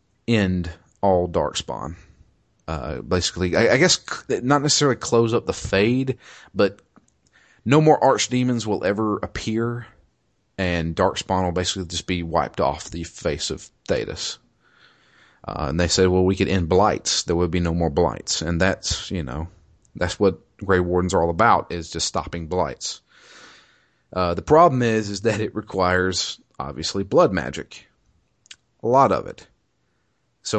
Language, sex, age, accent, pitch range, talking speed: English, male, 30-49, American, 85-110 Hz, 155 wpm